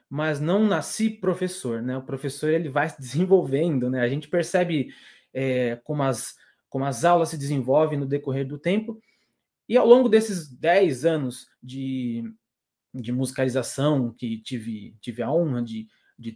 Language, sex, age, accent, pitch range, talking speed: Portuguese, male, 20-39, Brazilian, 130-185 Hz, 150 wpm